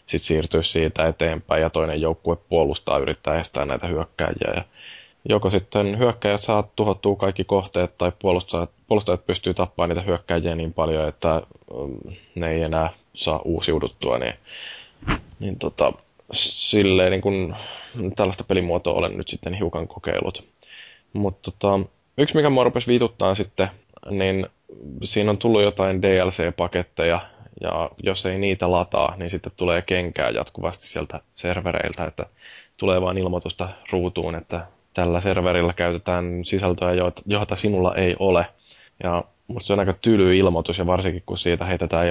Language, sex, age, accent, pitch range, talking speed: Finnish, male, 20-39, native, 85-95 Hz, 140 wpm